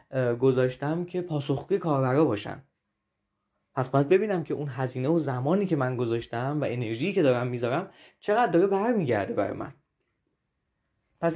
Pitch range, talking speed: 135-180 Hz, 145 wpm